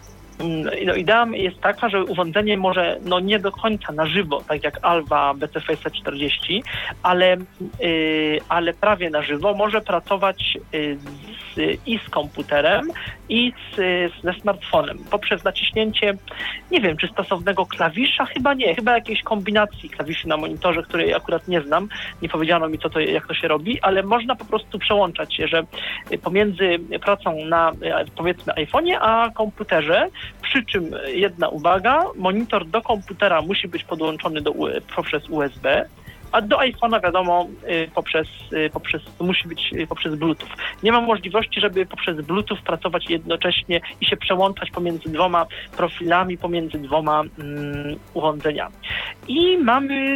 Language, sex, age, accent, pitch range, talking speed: Polish, male, 40-59, native, 160-210 Hz, 145 wpm